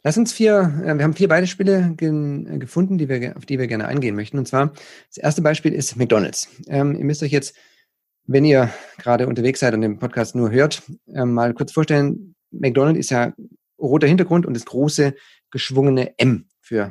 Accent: German